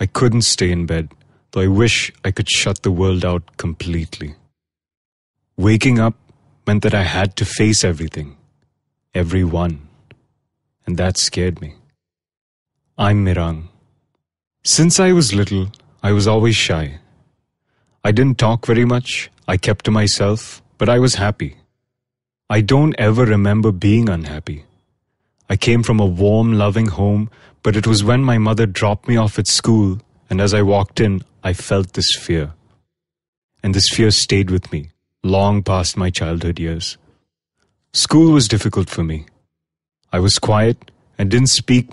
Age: 30-49